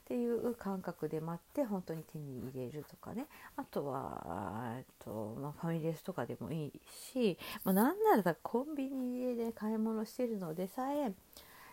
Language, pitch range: Japanese, 165-255 Hz